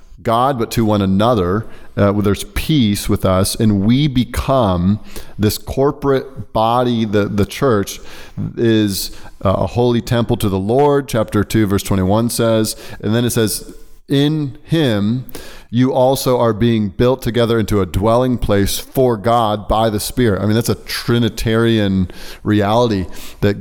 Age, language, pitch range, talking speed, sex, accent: 30-49, English, 95-115 Hz, 150 wpm, male, American